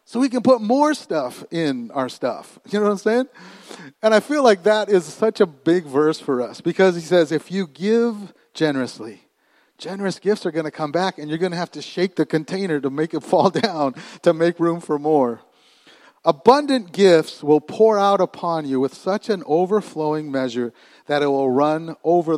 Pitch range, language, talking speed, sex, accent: 135-195 Hz, English, 205 wpm, male, American